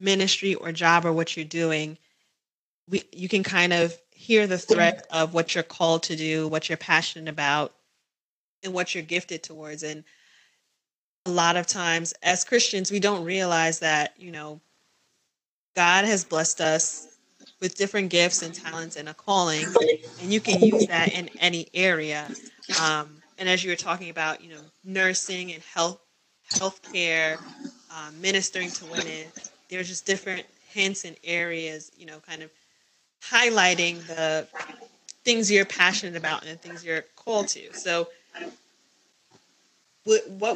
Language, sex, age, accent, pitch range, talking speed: English, female, 20-39, American, 160-190 Hz, 150 wpm